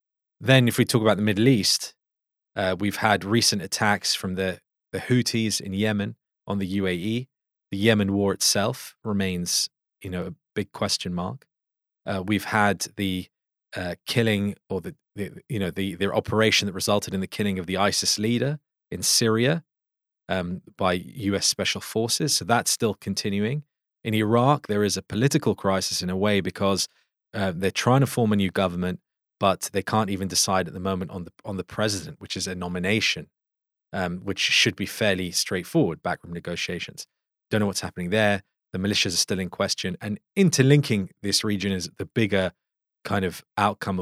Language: English